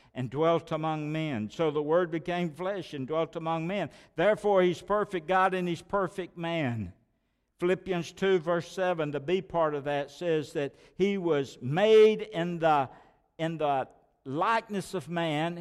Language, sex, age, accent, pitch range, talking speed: English, male, 60-79, American, 145-185 Hz, 160 wpm